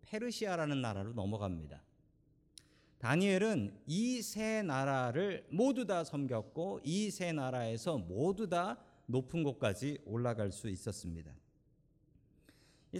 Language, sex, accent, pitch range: Korean, male, native, 120-175 Hz